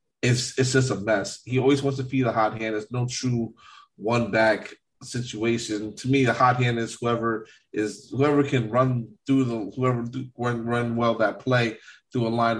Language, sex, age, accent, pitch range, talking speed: English, male, 20-39, American, 110-130 Hz, 200 wpm